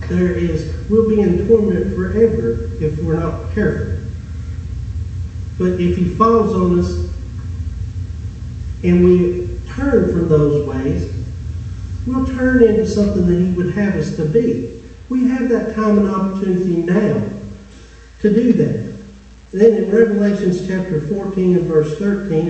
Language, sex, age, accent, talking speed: English, male, 50-69, American, 140 wpm